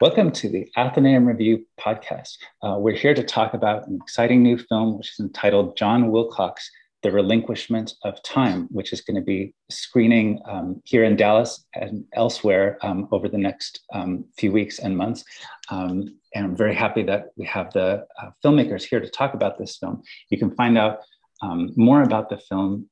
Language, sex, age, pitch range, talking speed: English, male, 30-49, 100-115 Hz, 185 wpm